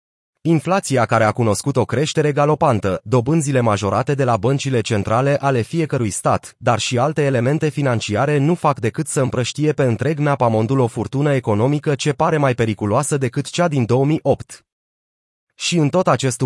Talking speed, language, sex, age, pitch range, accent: 165 wpm, Romanian, male, 30-49, 115-150 Hz, native